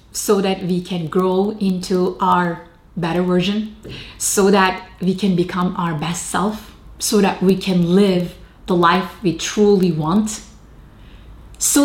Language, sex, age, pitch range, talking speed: English, female, 30-49, 180-225 Hz, 140 wpm